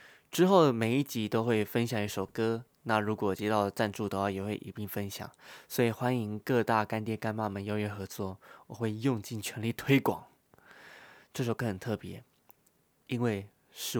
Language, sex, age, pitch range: Chinese, male, 20-39, 100-125 Hz